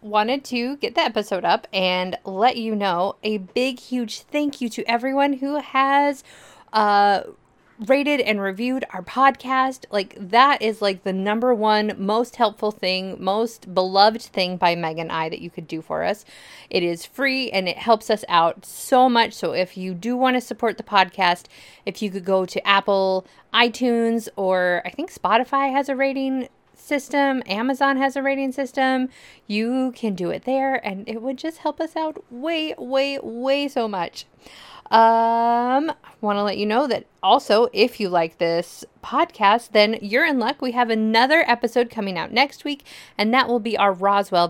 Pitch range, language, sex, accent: 195-260 Hz, English, female, American